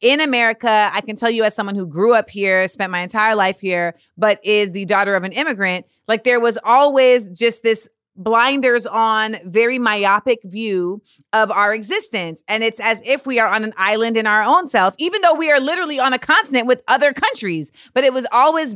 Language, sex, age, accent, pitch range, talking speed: English, female, 30-49, American, 200-255 Hz, 210 wpm